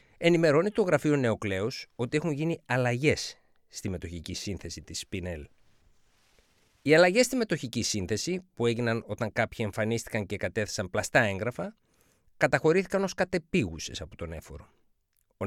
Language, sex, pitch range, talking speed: Greek, male, 95-150 Hz, 130 wpm